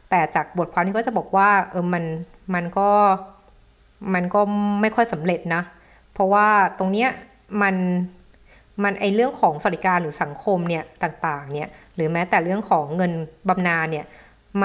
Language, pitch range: Thai, 170-205 Hz